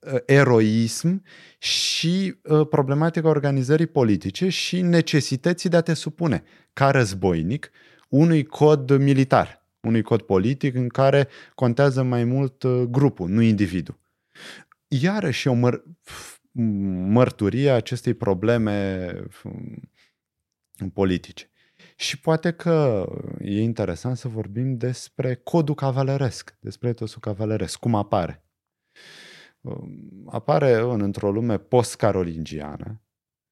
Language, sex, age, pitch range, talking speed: Romanian, male, 20-39, 105-145 Hz, 100 wpm